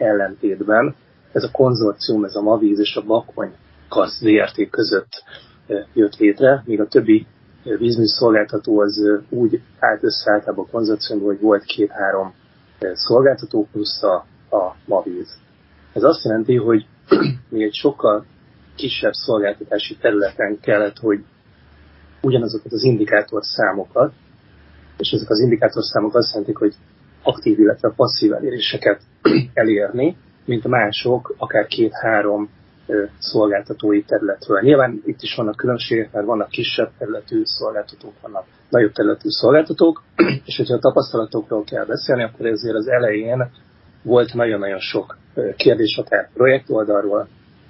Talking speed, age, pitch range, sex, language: 120 wpm, 30-49, 105-125 Hz, male, Hungarian